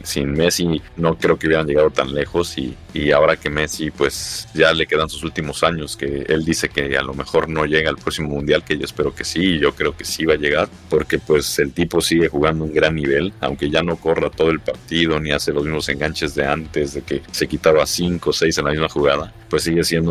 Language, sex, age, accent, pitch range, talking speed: Spanish, male, 40-59, Mexican, 70-85 Hz, 245 wpm